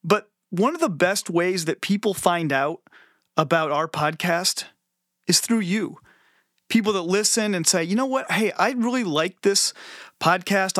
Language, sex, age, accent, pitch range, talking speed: English, male, 30-49, American, 160-210 Hz, 165 wpm